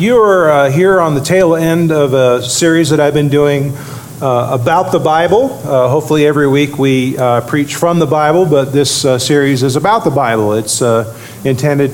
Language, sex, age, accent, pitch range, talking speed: English, male, 40-59, American, 125-150 Hz, 195 wpm